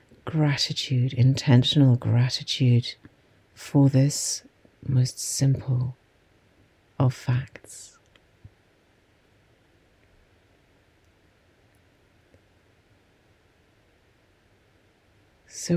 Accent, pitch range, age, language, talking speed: British, 100-135 Hz, 40-59, English, 40 wpm